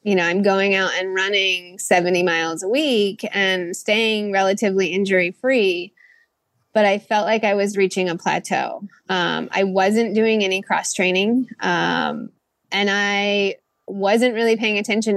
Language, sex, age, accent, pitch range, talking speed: English, female, 20-39, American, 180-210 Hz, 155 wpm